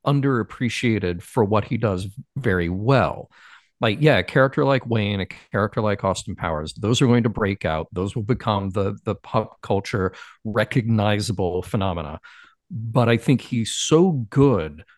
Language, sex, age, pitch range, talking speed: English, male, 50-69, 105-140 Hz, 155 wpm